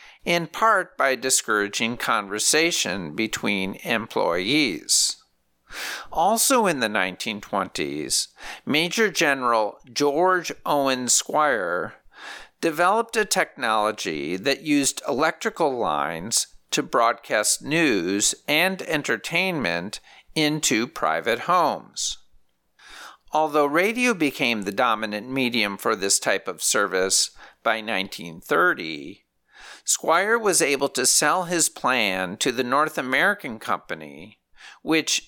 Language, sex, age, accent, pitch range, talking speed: English, male, 50-69, American, 115-175 Hz, 95 wpm